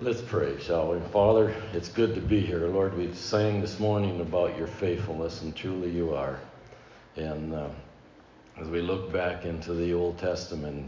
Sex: male